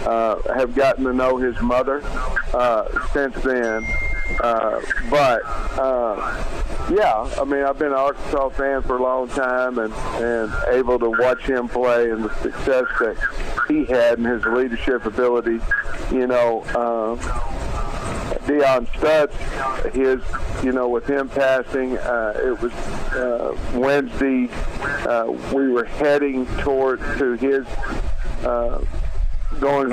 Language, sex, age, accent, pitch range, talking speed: English, male, 50-69, American, 115-130 Hz, 130 wpm